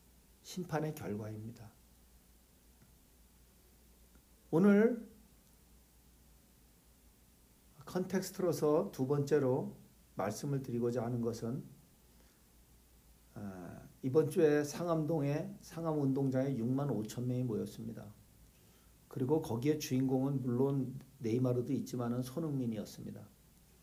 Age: 50-69